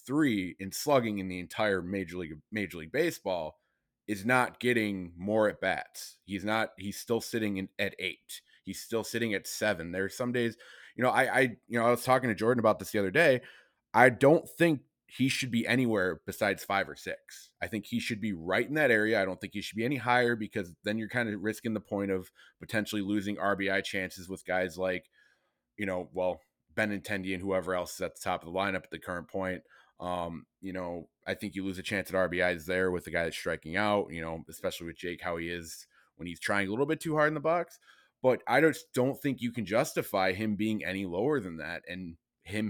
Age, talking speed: 20-39, 230 wpm